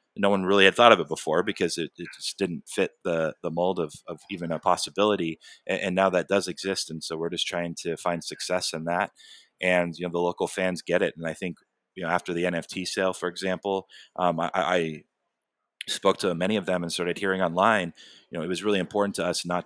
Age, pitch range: 30-49, 85-95 Hz